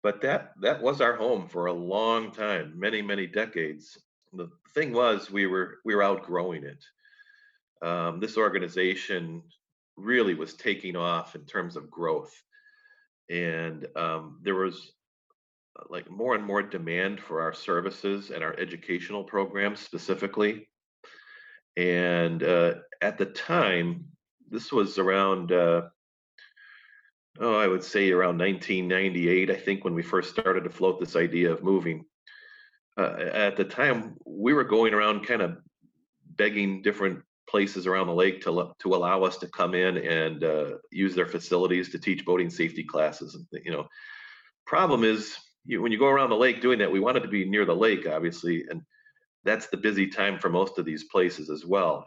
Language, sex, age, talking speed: English, male, 40-59, 170 wpm